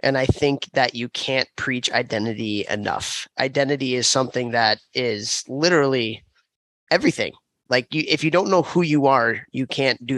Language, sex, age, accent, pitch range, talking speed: English, male, 20-39, American, 120-140 Hz, 160 wpm